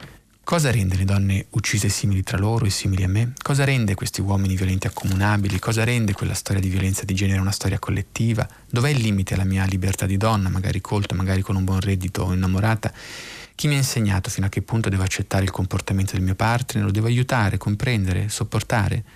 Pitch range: 100-120 Hz